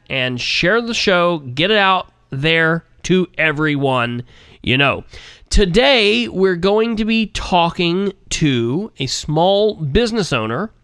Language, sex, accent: English, male, American